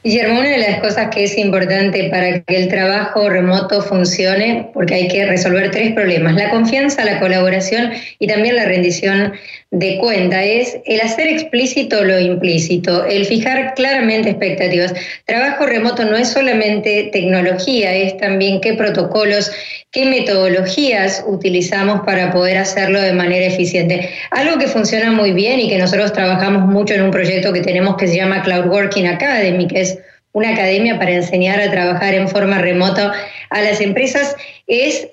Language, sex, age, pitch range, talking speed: Spanish, female, 20-39, 190-220 Hz, 160 wpm